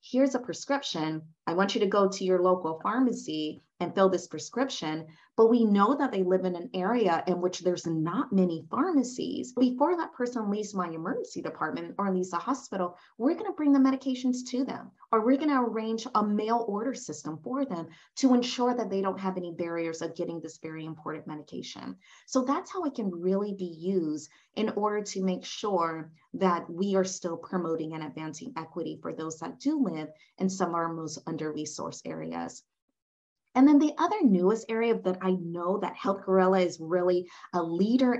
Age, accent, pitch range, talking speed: 30-49, American, 165-245 Hz, 195 wpm